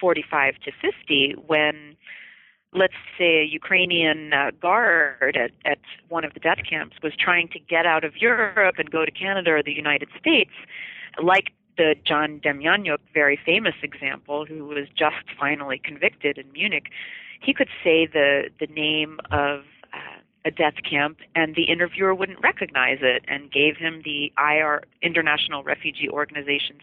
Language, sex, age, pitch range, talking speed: English, female, 40-59, 145-180 Hz, 160 wpm